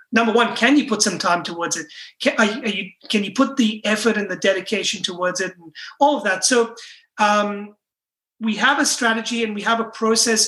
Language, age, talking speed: English, 30-49, 205 wpm